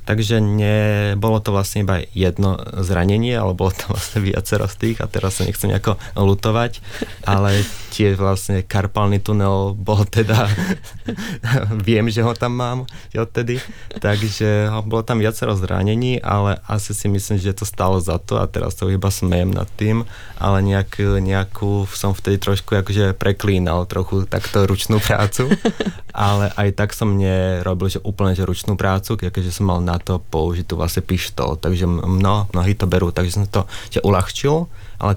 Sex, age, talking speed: male, 20-39, 160 wpm